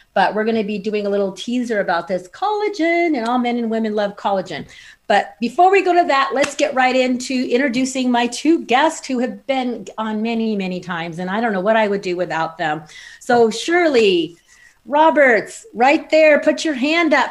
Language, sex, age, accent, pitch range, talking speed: English, female, 40-59, American, 205-275 Hz, 205 wpm